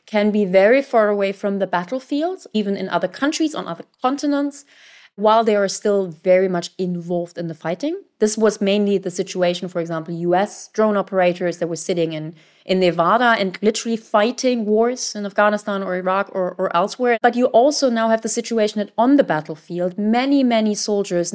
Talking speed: 185 wpm